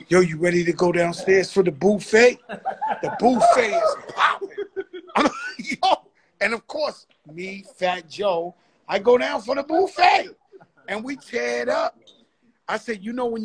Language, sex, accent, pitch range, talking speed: English, male, American, 180-240 Hz, 160 wpm